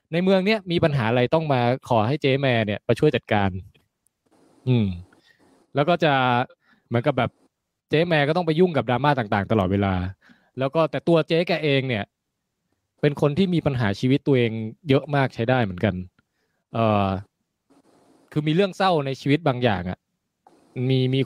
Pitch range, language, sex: 120-165 Hz, Thai, male